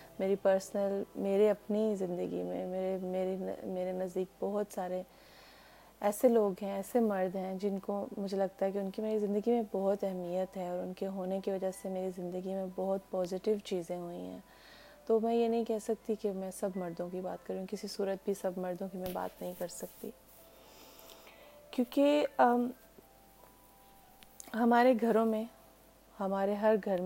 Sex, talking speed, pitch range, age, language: female, 175 wpm, 185-205 Hz, 30-49, Urdu